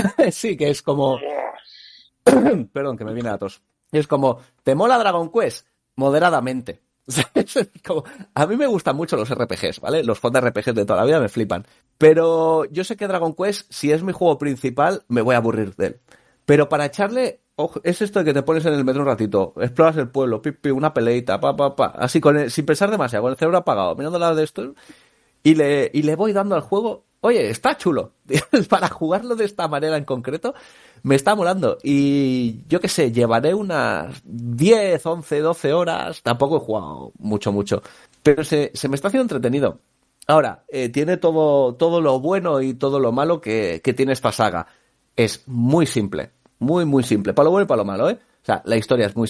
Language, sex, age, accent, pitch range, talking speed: Spanish, male, 30-49, Spanish, 125-165 Hz, 205 wpm